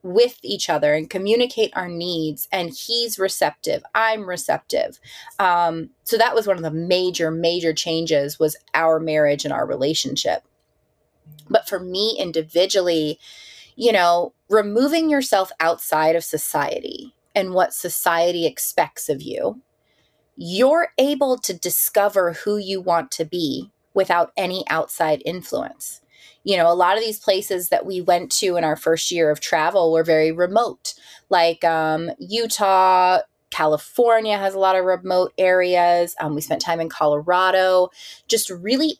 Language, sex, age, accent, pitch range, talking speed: English, female, 20-39, American, 165-210 Hz, 150 wpm